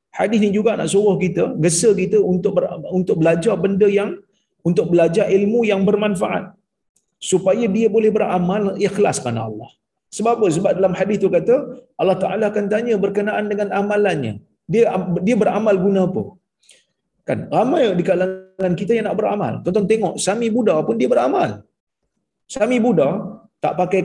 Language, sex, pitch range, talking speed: Malayalam, male, 175-210 Hz, 160 wpm